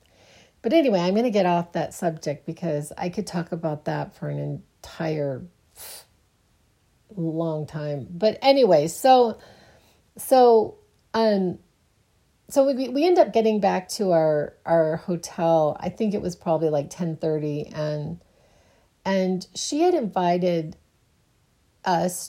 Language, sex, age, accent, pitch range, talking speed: English, female, 40-59, American, 165-220 Hz, 130 wpm